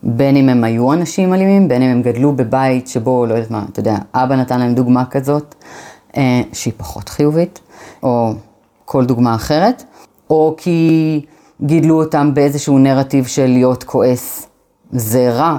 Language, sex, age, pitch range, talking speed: Hebrew, female, 30-49, 120-150 Hz, 160 wpm